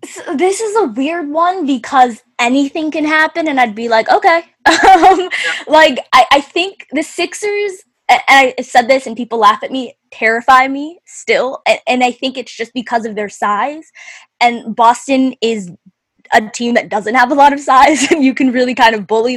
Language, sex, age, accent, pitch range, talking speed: English, female, 10-29, American, 215-275 Hz, 190 wpm